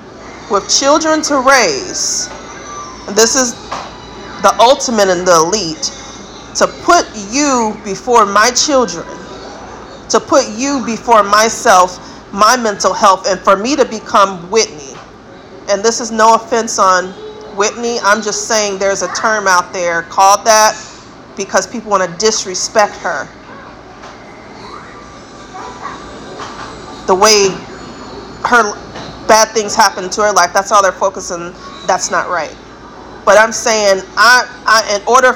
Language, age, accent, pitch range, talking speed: English, 40-59, American, 195-235 Hz, 130 wpm